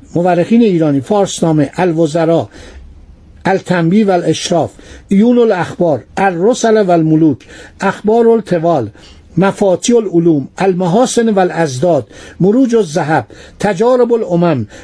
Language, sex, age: Persian, male, 60-79